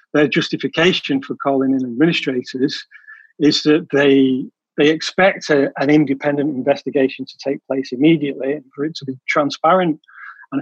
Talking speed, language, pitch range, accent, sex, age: 145 wpm, English, 140-185 Hz, British, male, 40-59